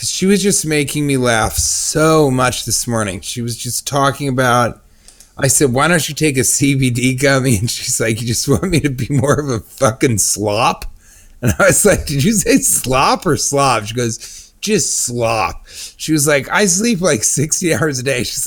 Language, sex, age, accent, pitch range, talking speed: English, male, 30-49, American, 120-170 Hz, 205 wpm